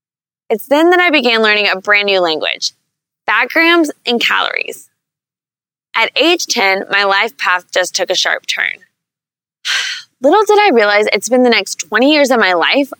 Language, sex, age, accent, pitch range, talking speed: English, female, 20-39, American, 200-290 Hz, 175 wpm